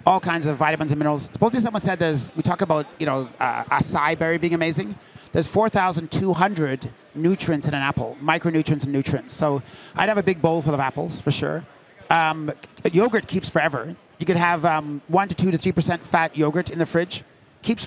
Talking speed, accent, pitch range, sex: 200 wpm, American, 155-185 Hz, male